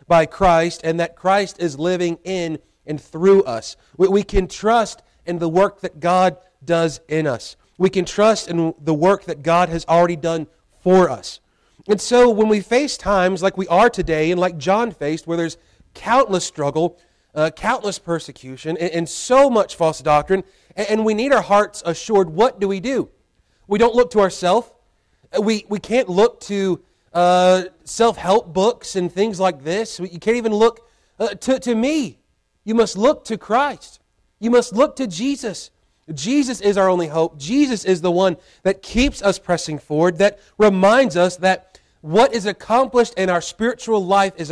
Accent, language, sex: American, English, male